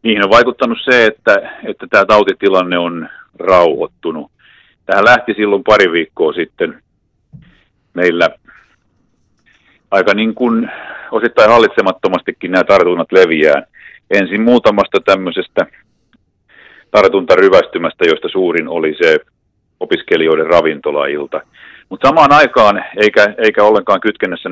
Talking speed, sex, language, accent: 105 wpm, male, Finnish, native